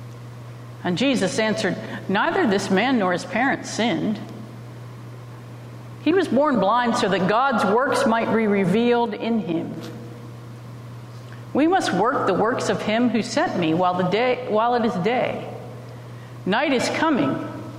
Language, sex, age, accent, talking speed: English, female, 50-69, American, 145 wpm